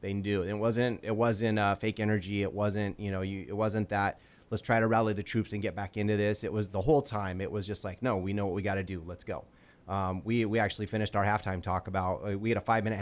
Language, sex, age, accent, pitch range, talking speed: English, male, 30-49, American, 95-110 Hz, 280 wpm